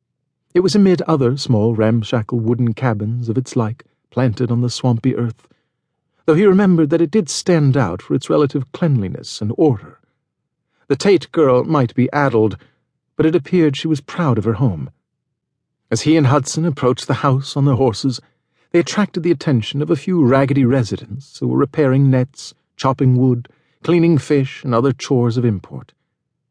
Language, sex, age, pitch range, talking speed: English, male, 50-69, 120-155 Hz, 175 wpm